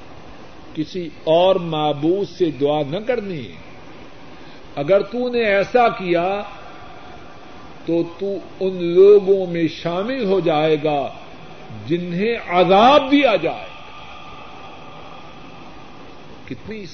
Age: 50-69